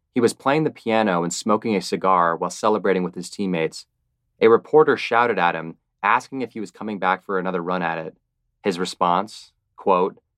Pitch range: 85-110 Hz